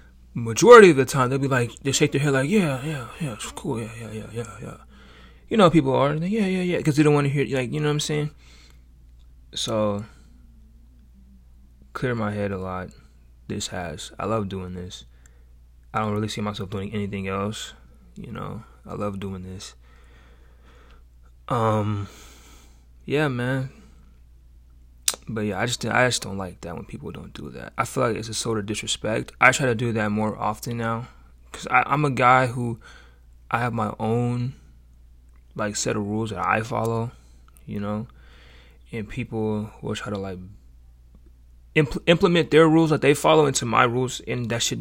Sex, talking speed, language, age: male, 180 wpm, English, 20-39